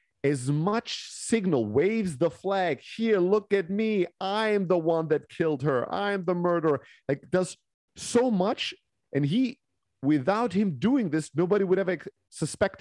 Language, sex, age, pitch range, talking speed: English, male, 40-59, 140-195 Hz, 155 wpm